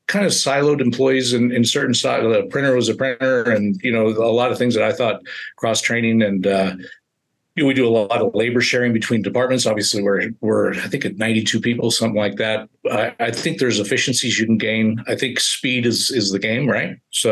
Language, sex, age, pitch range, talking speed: English, male, 50-69, 110-130 Hz, 225 wpm